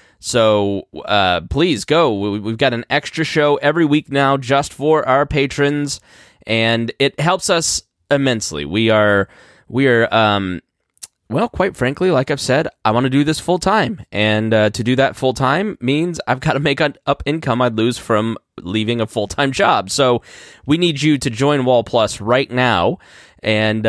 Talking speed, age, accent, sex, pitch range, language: 175 wpm, 10-29, American, male, 110-150 Hz, English